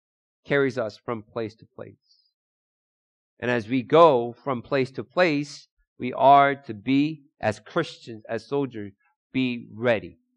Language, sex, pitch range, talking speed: English, male, 110-135 Hz, 140 wpm